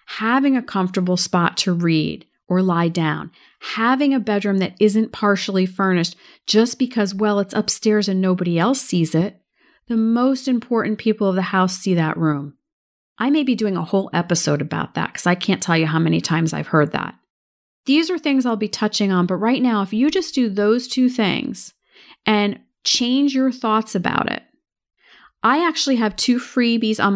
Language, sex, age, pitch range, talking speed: English, female, 40-59, 185-240 Hz, 190 wpm